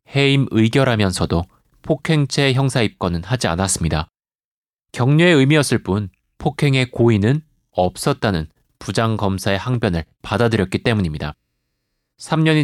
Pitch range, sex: 100-135 Hz, male